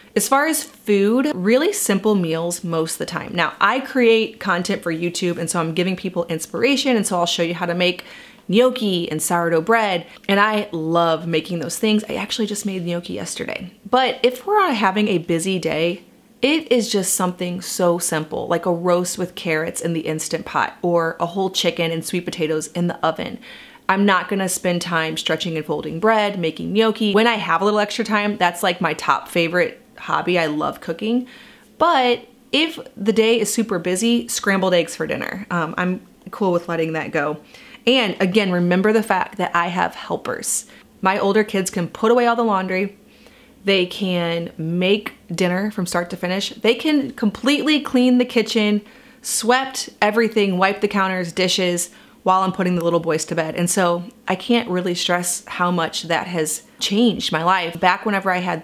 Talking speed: 190 wpm